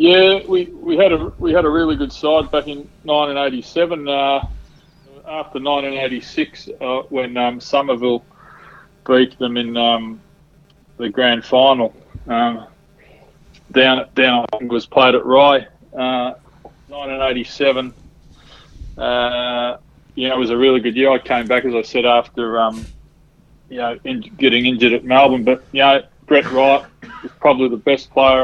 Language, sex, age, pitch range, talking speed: English, male, 20-39, 120-140 Hz, 150 wpm